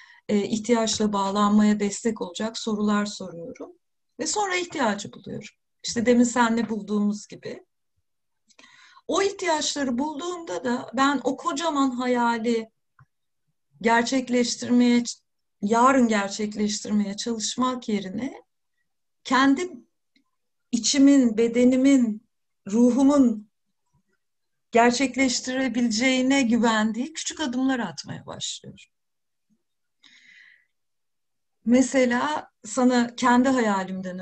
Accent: native